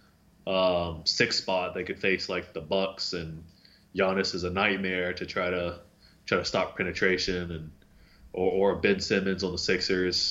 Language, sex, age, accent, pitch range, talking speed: English, male, 20-39, American, 90-100 Hz, 170 wpm